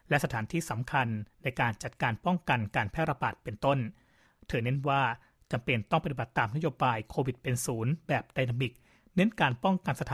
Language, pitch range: Thai, 120-150 Hz